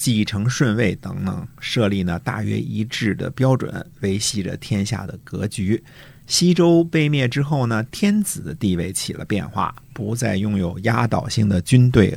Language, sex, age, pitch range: Chinese, male, 50-69, 100-135 Hz